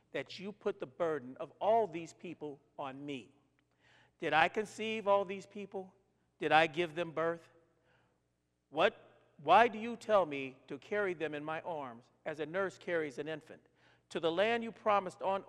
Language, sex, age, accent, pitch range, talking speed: English, male, 50-69, American, 145-205 Hz, 180 wpm